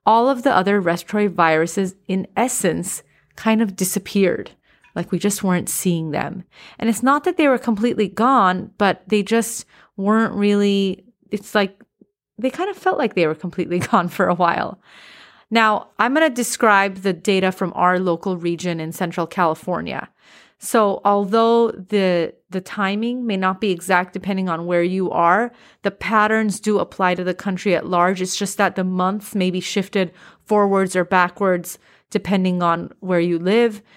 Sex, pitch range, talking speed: female, 180-215 Hz, 170 wpm